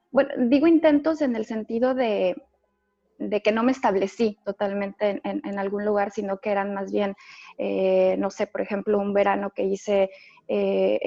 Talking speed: 180 wpm